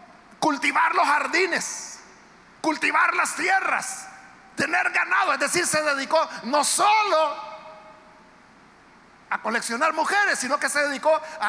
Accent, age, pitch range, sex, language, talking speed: Mexican, 50-69, 275-345 Hz, male, Spanish, 115 wpm